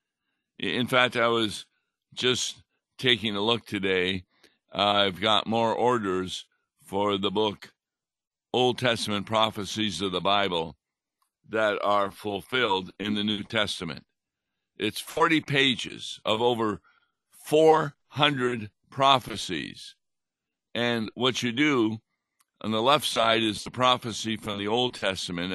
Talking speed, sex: 120 wpm, male